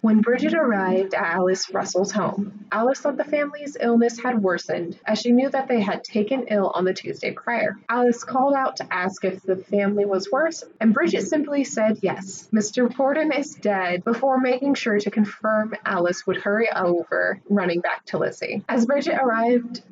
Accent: American